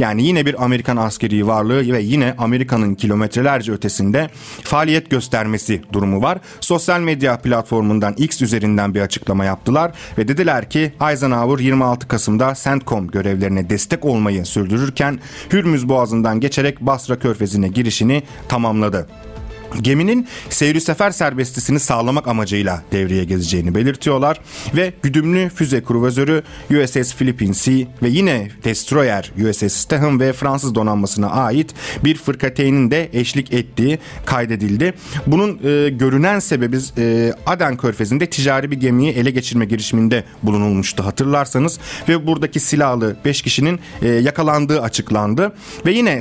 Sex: male